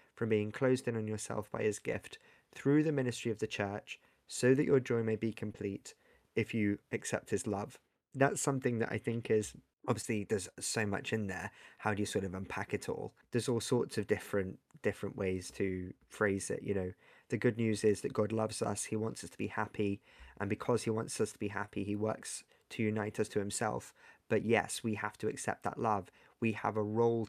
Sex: male